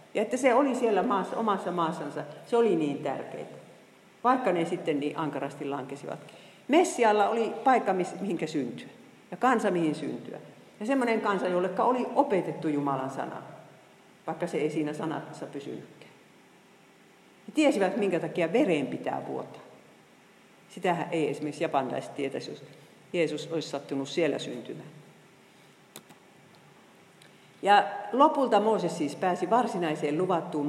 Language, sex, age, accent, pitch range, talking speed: Finnish, female, 50-69, native, 150-210 Hz, 125 wpm